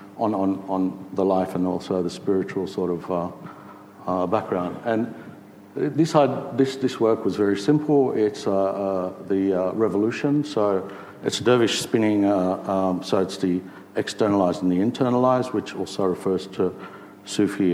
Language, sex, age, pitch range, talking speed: English, male, 60-79, 95-115 Hz, 150 wpm